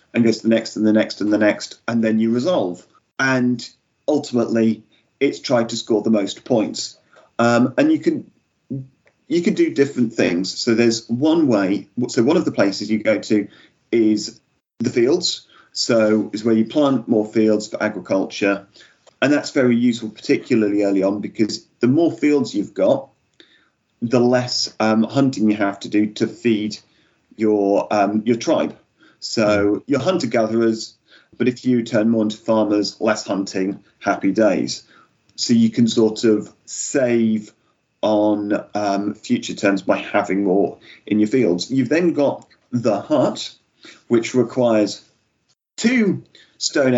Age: 40-59